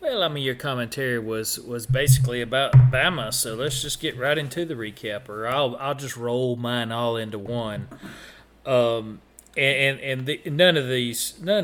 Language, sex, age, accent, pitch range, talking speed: English, male, 40-59, American, 120-150 Hz, 165 wpm